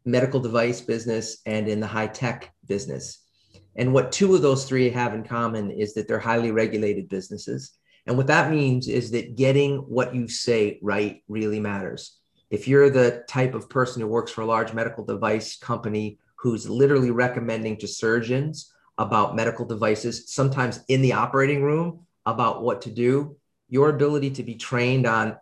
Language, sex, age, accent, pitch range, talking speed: English, male, 40-59, American, 110-135 Hz, 175 wpm